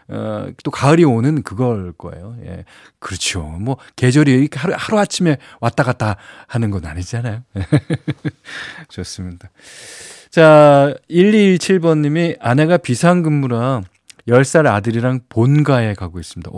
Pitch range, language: 100-150 Hz, Korean